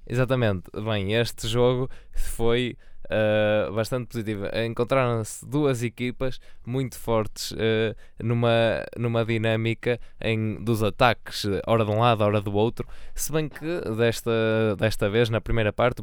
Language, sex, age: Portuguese, male, 20-39